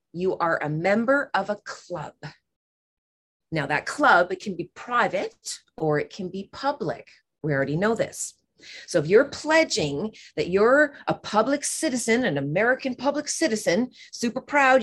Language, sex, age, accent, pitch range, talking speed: English, female, 30-49, American, 155-235 Hz, 155 wpm